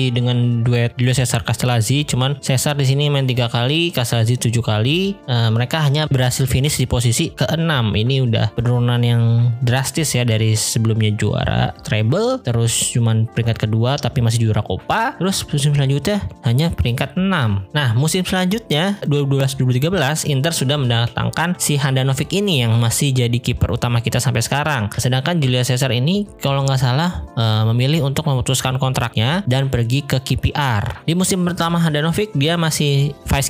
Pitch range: 120-145 Hz